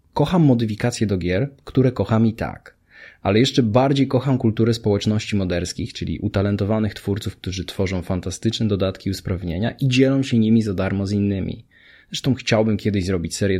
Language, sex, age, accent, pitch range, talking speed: Polish, male, 20-39, native, 95-120 Hz, 160 wpm